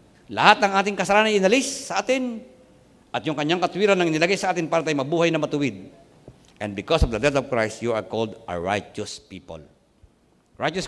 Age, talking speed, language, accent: 50-69, 195 wpm, Filipino, native